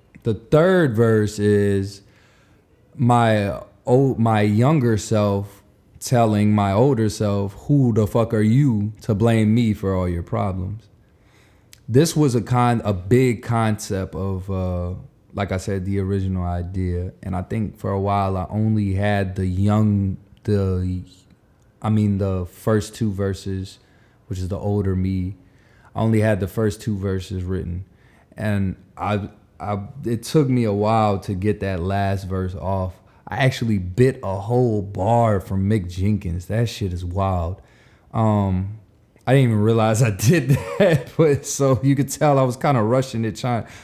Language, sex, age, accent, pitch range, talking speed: English, male, 20-39, American, 100-120 Hz, 160 wpm